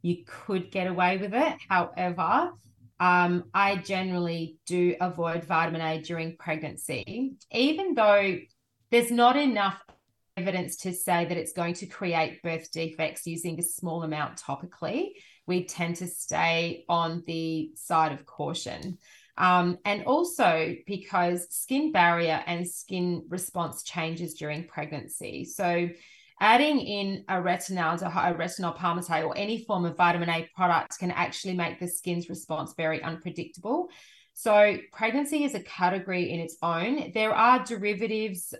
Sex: female